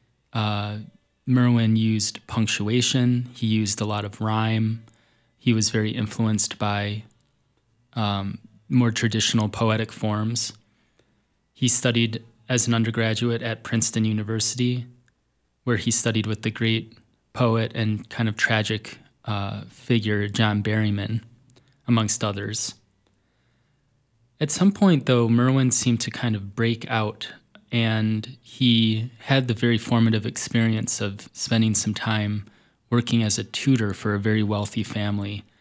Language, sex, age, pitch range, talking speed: English, male, 20-39, 105-120 Hz, 130 wpm